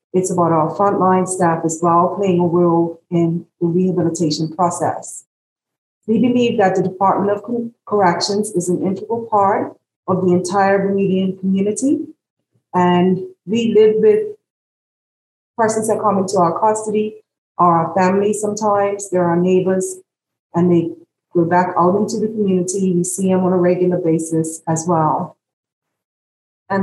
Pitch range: 170-200 Hz